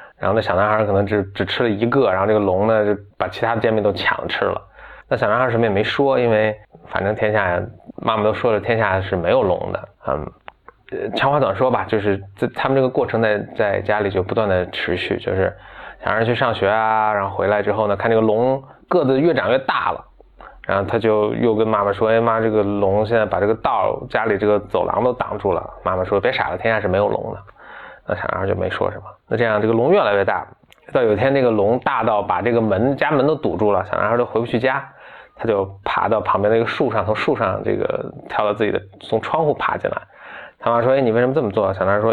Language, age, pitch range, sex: Chinese, 20-39, 100-120 Hz, male